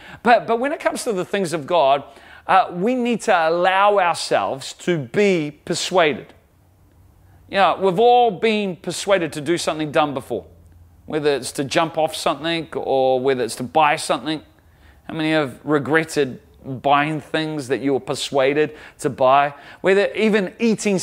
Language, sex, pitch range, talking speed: English, male, 150-210 Hz, 165 wpm